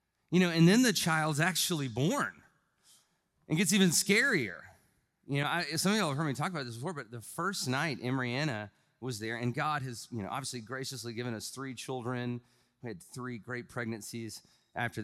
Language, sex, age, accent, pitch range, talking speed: English, male, 30-49, American, 115-160 Hz, 195 wpm